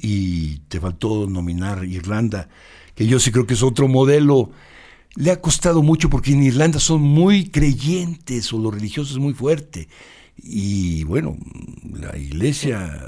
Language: Spanish